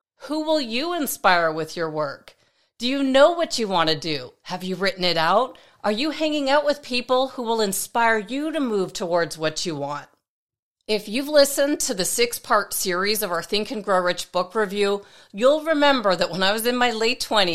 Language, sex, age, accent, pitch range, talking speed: English, female, 40-59, American, 175-250 Hz, 205 wpm